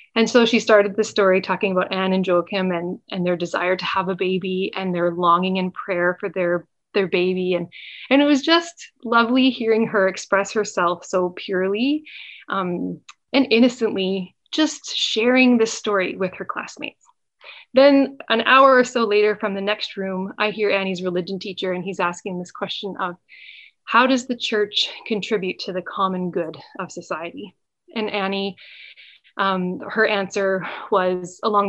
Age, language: 20-39, English